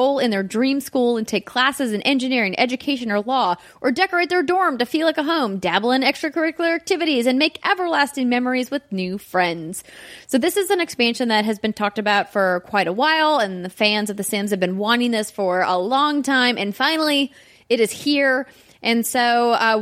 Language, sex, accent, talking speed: English, female, American, 205 wpm